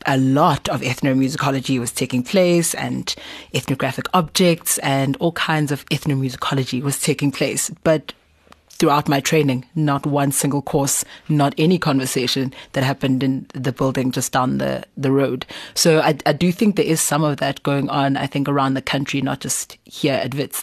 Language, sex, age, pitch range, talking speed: English, female, 30-49, 135-160 Hz, 175 wpm